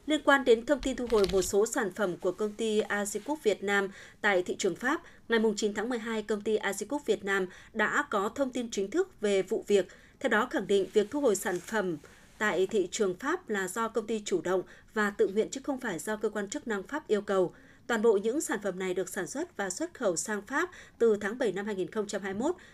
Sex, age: female, 20-39